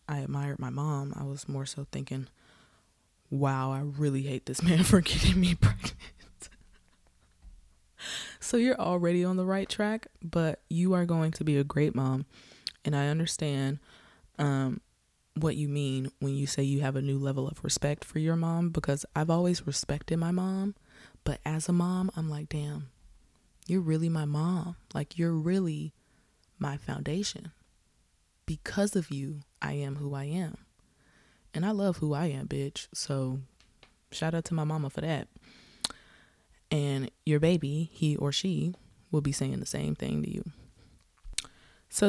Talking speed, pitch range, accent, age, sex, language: 165 wpm, 140-170 Hz, American, 20-39, female, English